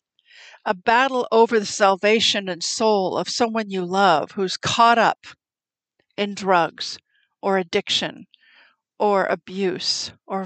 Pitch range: 190-245 Hz